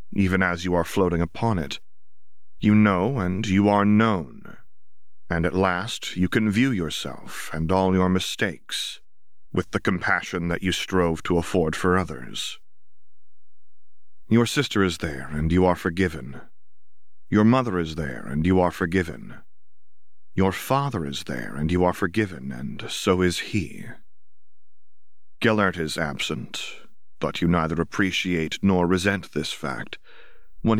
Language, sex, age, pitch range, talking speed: English, male, 30-49, 85-100 Hz, 145 wpm